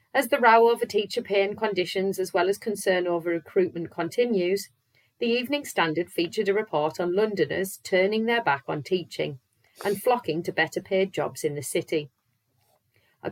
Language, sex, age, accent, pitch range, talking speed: English, female, 40-59, British, 160-205 Hz, 170 wpm